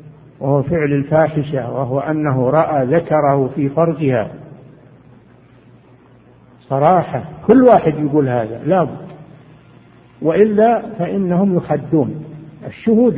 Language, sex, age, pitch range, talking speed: Arabic, male, 60-79, 145-180 Hz, 85 wpm